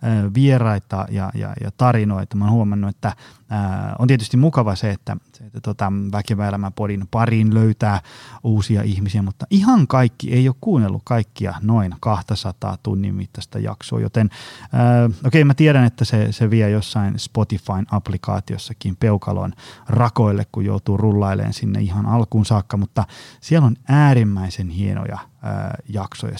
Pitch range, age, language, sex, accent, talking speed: 100-125 Hz, 20-39, Finnish, male, native, 145 wpm